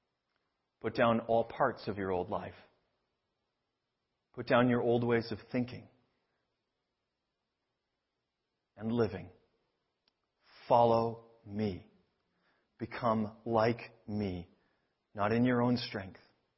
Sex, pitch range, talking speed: male, 100-120 Hz, 100 wpm